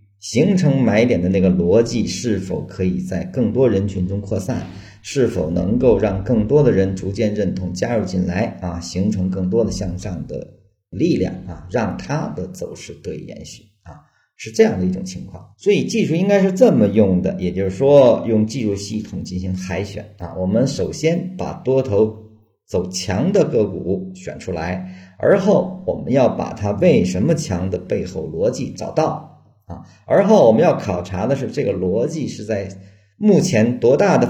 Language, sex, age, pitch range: Chinese, male, 40-59, 95-115 Hz